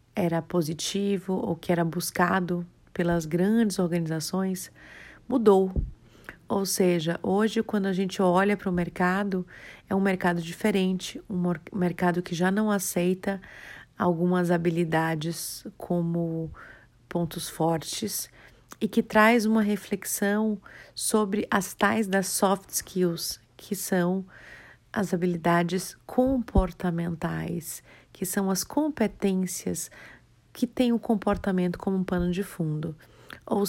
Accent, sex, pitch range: Brazilian, female, 175-210 Hz